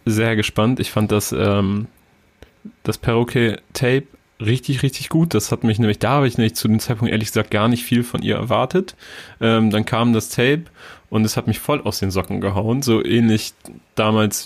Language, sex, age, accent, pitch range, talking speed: German, male, 30-49, German, 100-120 Hz, 190 wpm